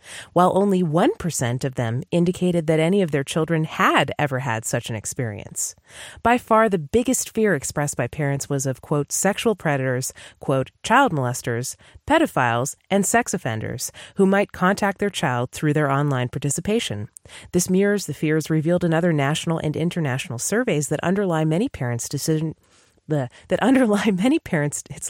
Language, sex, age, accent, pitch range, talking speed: English, female, 30-49, American, 145-205 Hz, 160 wpm